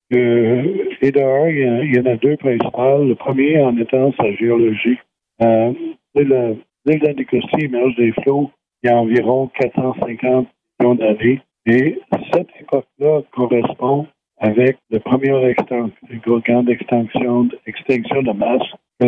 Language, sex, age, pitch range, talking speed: French, male, 60-79, 120-140 Hz, 140 wpm